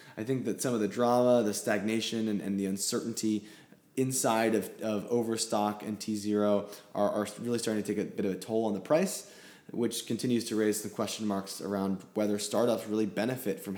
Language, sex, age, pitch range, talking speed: English, male, 20-39, 105-115 Hz, 200 wpm